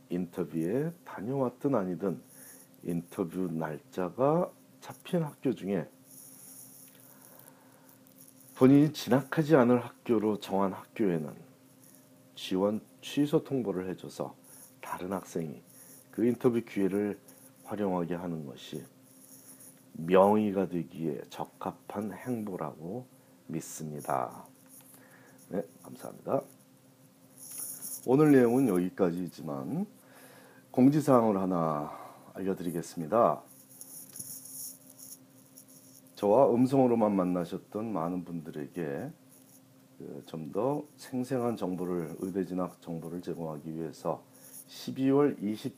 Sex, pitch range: male, 85-120 Hz